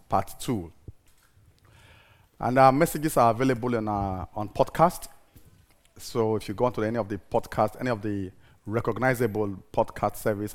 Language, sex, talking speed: English, male, 135 wpm